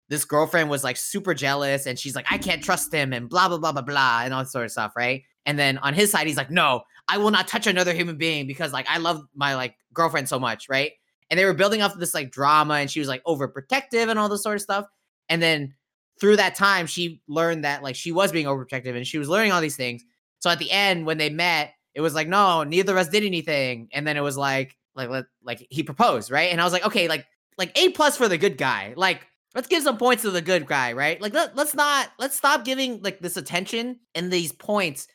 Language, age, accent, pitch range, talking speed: English, 20-39, American, 145-200 Hz, 260 wpm